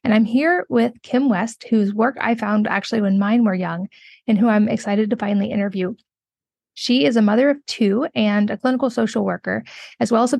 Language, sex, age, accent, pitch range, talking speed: English, female, 20-39, American, 205-235 Hz, 215 wpm